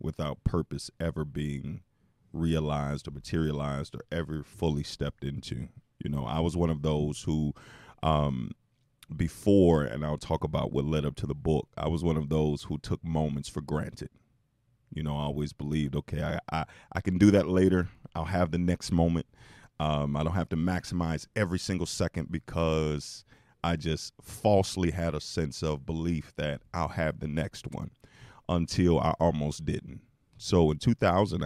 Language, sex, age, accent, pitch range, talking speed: English, male, 40-59, American, 75-90 Hz, 175 wpm